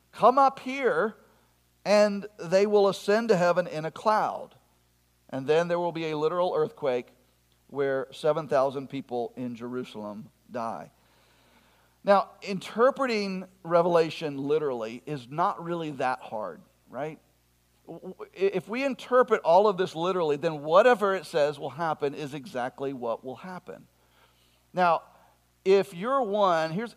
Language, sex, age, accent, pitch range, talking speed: English, male, 50-69, American, 140-205 Hz, 130 wpm